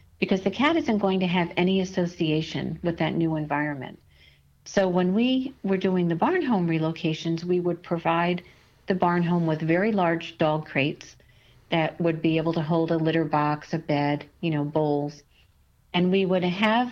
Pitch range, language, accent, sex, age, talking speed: 160-190 Hz, English, American, female, 50-69, 180 wpm